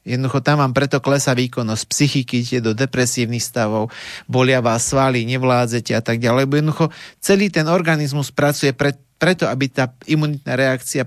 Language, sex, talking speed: Slovak, male, 145 wpm